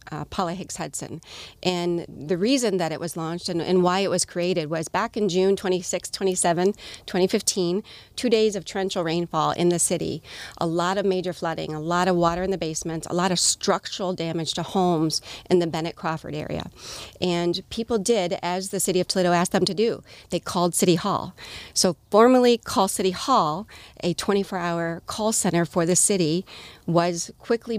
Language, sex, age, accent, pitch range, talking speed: English, female, 40-59, American, 165-190 Hz, 185 wpm